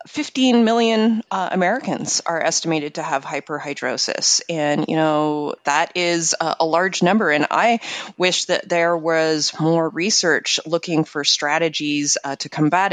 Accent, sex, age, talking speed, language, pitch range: American, female, 30-49, 150 wpm, English, 160-215 Hz